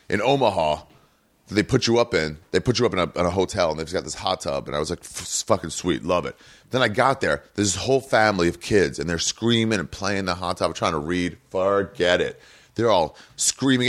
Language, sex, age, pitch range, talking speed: English, male, 30-49, 95-155 Hz, 255 wpm